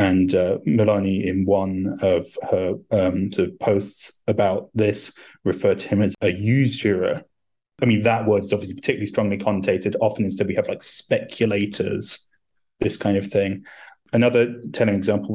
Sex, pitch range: male, 95-110 Hz